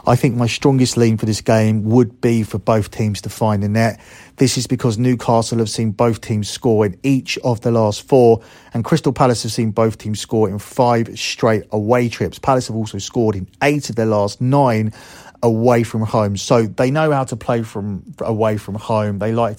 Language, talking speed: English, 215 wpm